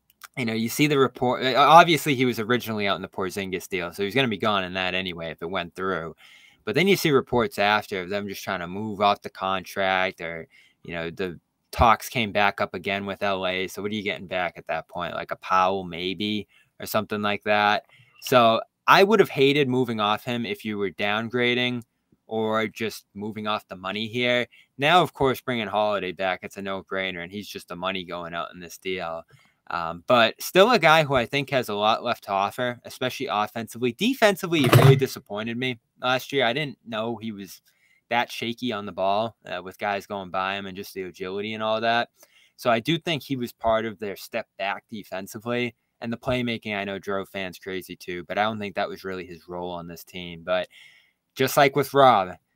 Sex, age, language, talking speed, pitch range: male, 20-39, English, 220 wpm, 95-125 Hz